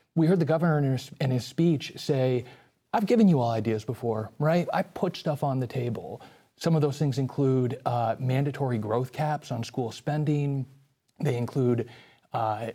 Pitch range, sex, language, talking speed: 115-150 Hz, male, English, 180 wpm